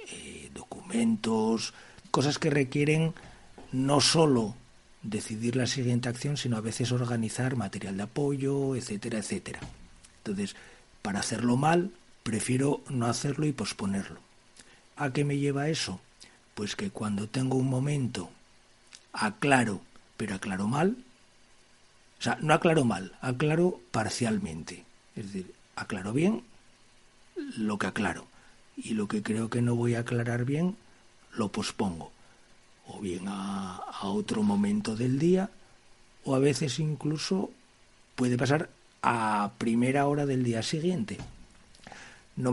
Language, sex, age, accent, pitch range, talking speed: Spanish, male, 40-59, Spanish, 115-150 Hz, 125 wpm